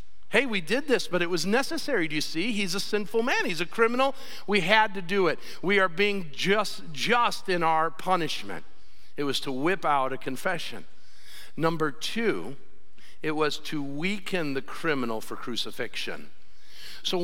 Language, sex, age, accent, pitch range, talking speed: English, male, 50-69, American, 160-210 Hz, 170 wpm